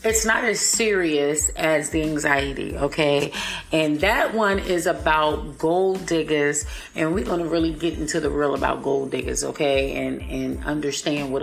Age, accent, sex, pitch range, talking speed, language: 30-49, American, female, 150-180 Hz, 170 wpm, English